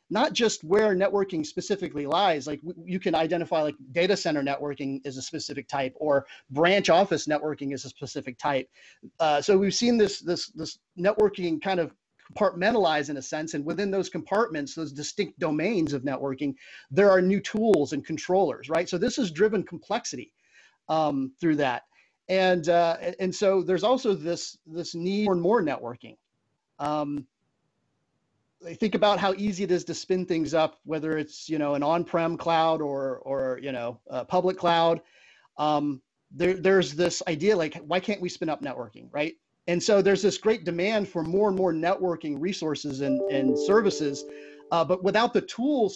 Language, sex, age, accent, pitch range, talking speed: English, male, 30-49, American, 150-195 Hz, 180 wpm